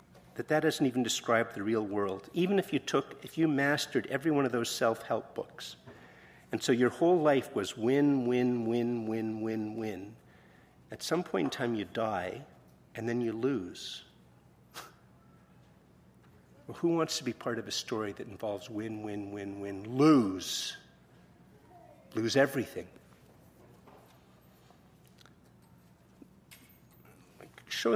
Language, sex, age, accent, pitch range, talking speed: English, male, 50-69, American, 100-130 Hz, 130 wpm